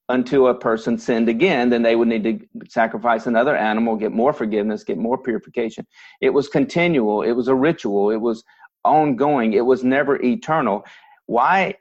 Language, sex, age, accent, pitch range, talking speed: English, male, 40-59, American, 120-155 Hz, 170 wpm